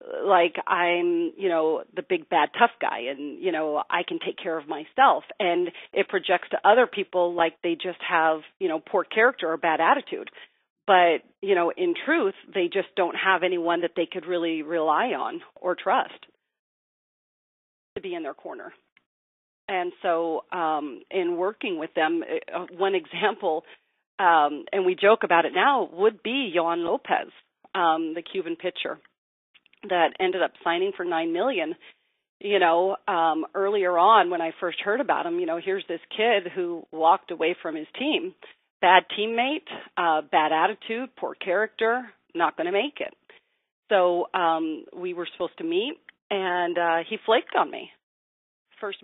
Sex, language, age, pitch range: female, English, 40-59, 170-275 Hz